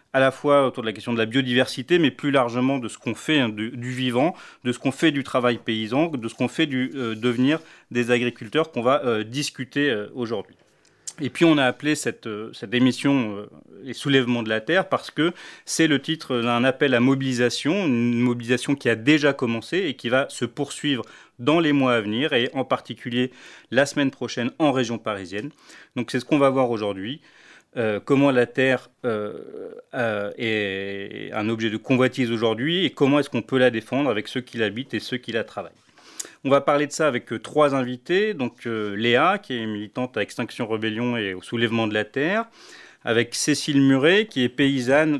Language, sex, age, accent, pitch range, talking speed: French, male, 30-49, French, 120-145 Hz, 210 wpm